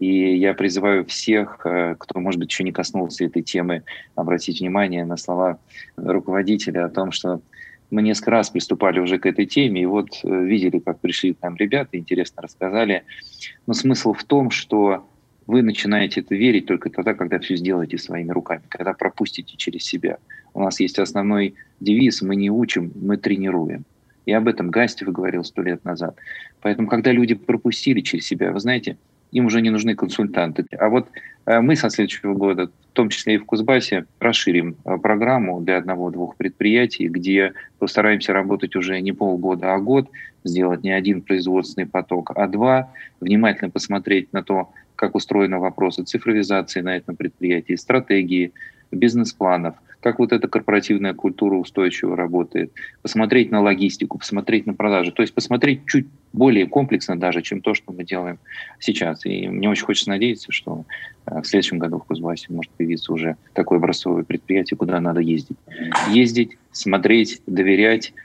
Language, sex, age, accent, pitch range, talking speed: Russian, male, 20-39, native, 90-110 Hz, 160 wpm